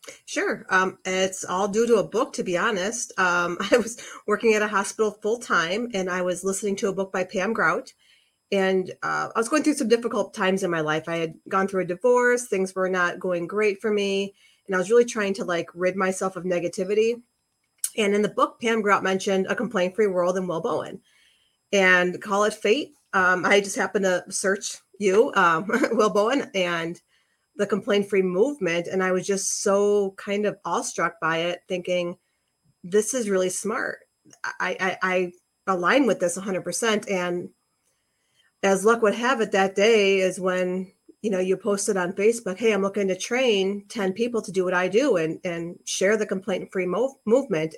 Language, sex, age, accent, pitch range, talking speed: English, female, 30-49, American, 185-215 Hz, 195 wpm